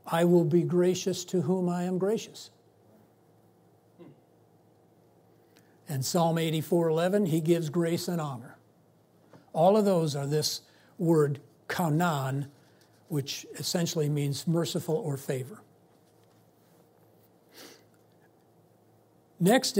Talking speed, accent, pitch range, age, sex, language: 95 wpm, American, 155-190 Hz, 60-79, male, English